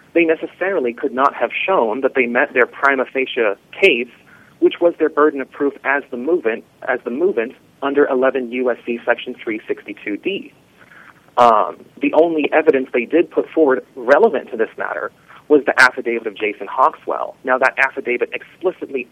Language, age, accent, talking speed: English, 30-49, American, 155 wpm